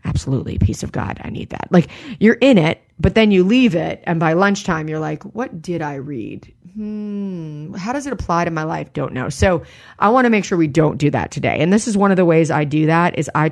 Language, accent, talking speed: English, American, 255 wpm